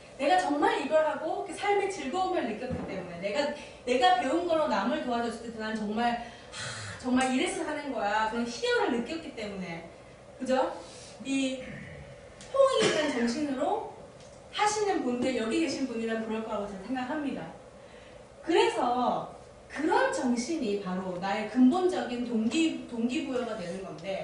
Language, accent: Korean, native